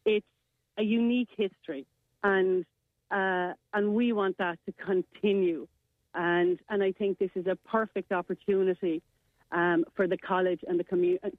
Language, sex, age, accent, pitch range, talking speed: English, female, 40-59, Irish, 175-200 Hz, 150 wpm